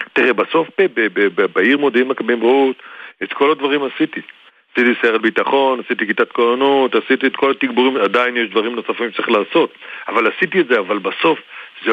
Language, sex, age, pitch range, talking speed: Hebrew, male, 40-59, 130-180 Hz, 190 wpm